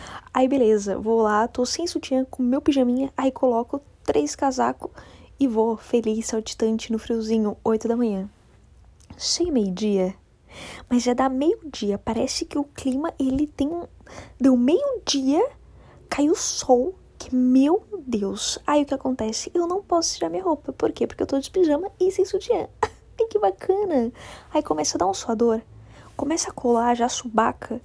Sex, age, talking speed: female, 10-29, 165 wpm